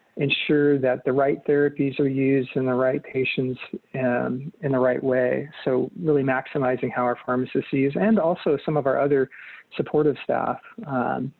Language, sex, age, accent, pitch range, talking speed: English, male, 40-59, American, 130-150 Hz, 170 wpm